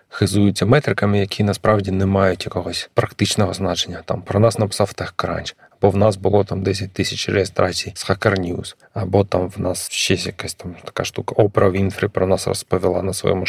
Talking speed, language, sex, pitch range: 180 wpm, Ukrainian, male, 95-110 Hz